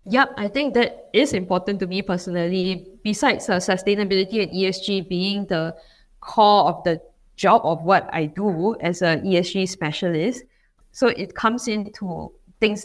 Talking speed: 155 wpm